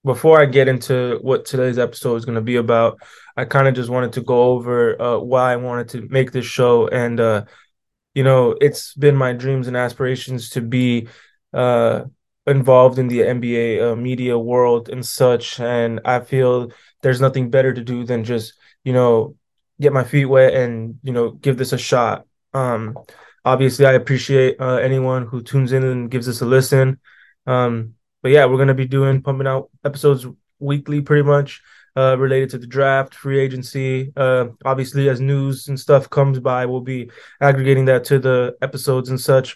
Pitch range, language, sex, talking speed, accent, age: 120-135 Hz, English, male, 190 wpm, American, 20-39